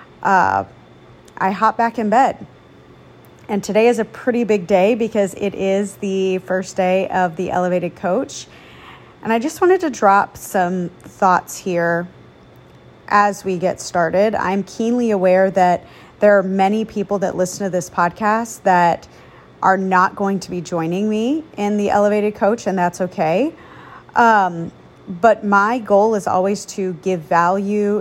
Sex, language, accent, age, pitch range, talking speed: female, English, American, 30-49, 180-210 Hz, 155 wpm